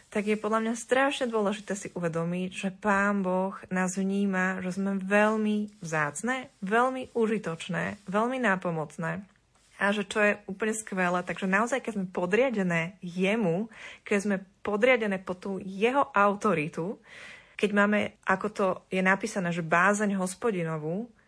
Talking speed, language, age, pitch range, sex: 140 wpm, Slovak, 20-39, 180-215 Hz, female